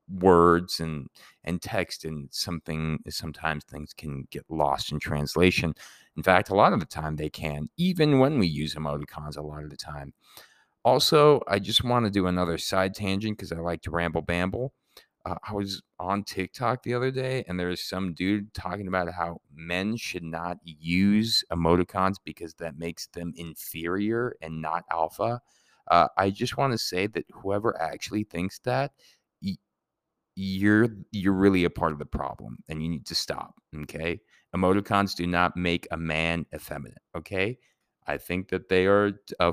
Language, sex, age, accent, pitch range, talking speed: English, male, 30-49, American, 85-100 Hz, 175 wpm